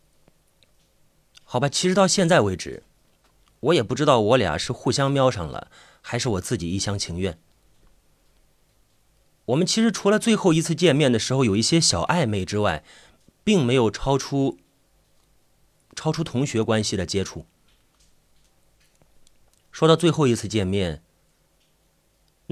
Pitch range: 100-155 Hz